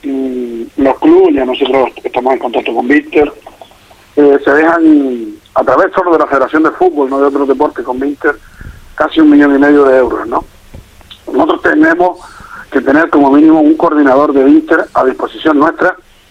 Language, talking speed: Spanish, 175 wpm